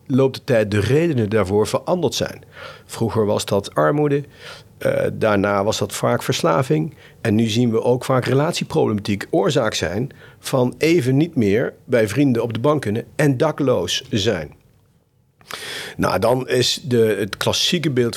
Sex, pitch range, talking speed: male, 105-130 Hz, 150 wpm